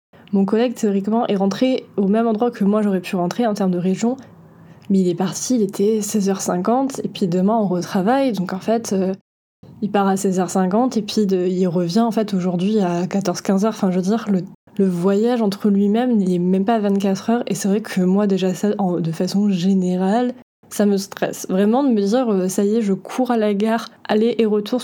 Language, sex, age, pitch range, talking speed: French, female, 20-39, 190-220 Hz, 220 wpm